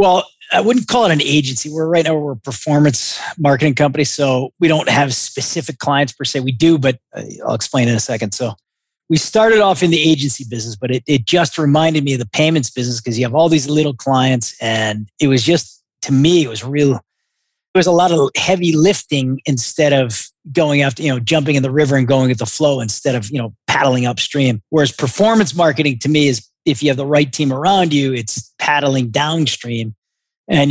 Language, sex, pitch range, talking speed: English, male, 125-155 Hz, 215 wpm